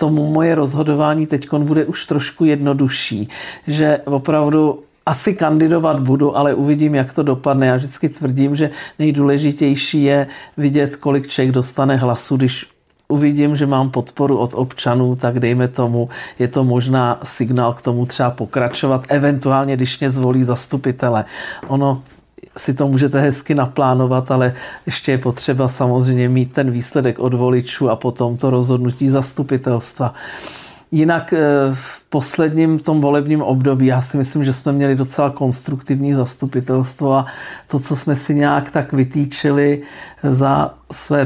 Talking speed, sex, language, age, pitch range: 145 wpm, male, Czech, 50-69, 130-145 Hz